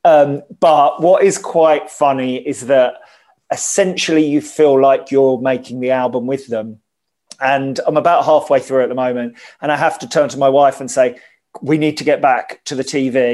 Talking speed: 200 wpm